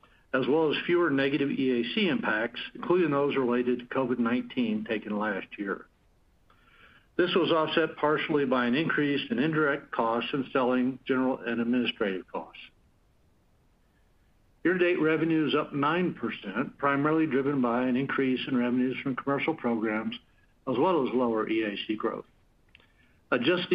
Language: English